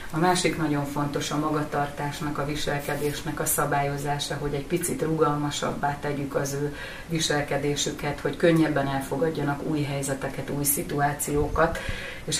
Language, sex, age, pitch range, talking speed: Hungarian, female, 30-49, 140-155 Hz, 125 wpm